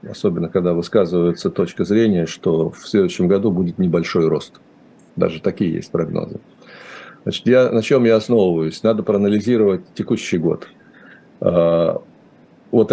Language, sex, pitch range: Russian, male, 85-110 Hz